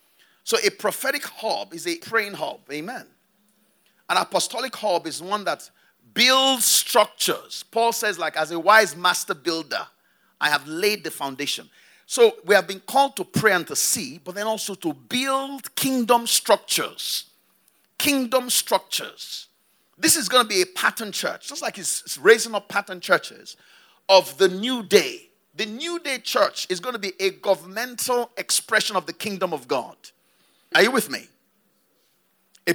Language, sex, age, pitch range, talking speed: English, male, 50-69, 185-265 Hz, 165 wpm